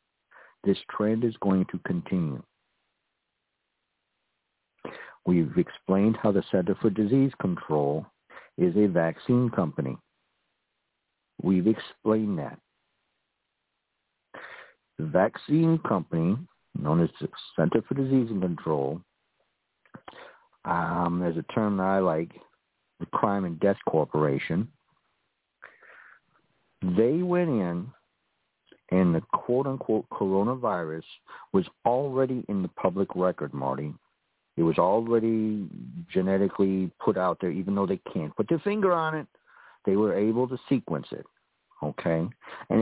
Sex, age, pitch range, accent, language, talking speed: male, 60-79, 90-125 Hz, American, English, 115 wpm